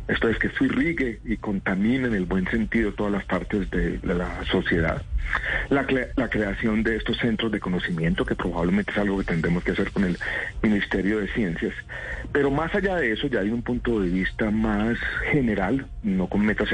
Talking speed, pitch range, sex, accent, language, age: 190 wpm, 95-115 Hz, male, Colombian, Spanish, 40-59